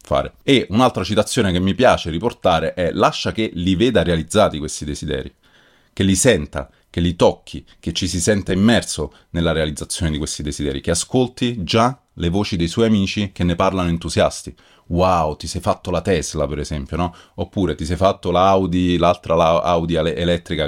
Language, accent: Italian, native